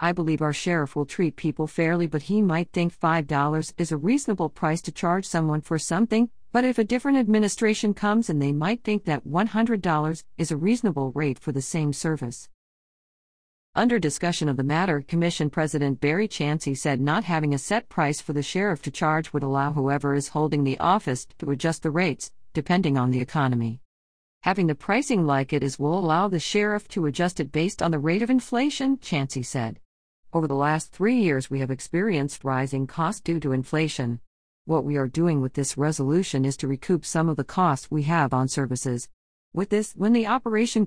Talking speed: 195 wpm